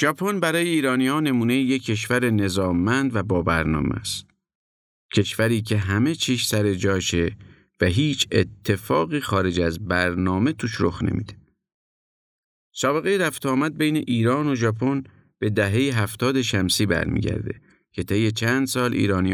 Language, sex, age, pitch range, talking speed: Persian, male, 50-69, 90-125 Hz, 135 wpm